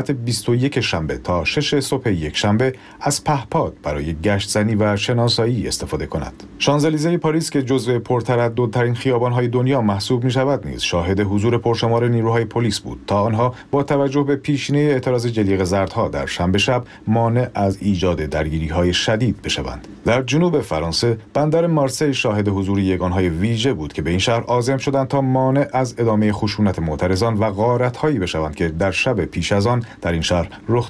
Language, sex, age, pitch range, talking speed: Persian, male, 40-59, 95-130 Hz, 175 wpm